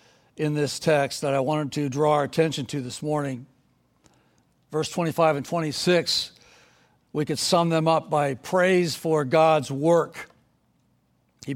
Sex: male